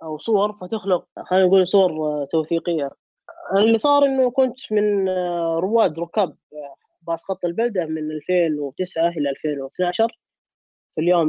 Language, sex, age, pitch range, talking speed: Arabic, female, 20-39, 150-200 Hz, 120 wpm